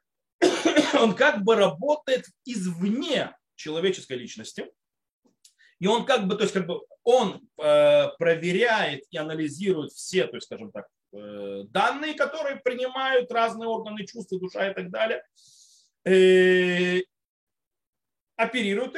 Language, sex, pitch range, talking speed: Russian, male, 175-260 Hz, 115 wpm